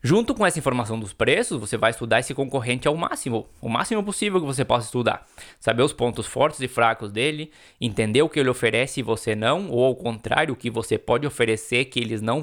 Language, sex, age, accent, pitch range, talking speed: Portuguese, male, 20-39, Brazilian, 115-160 Hz, 220 wpm